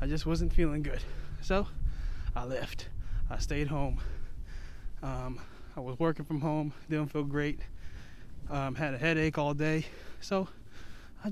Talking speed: 150 wpm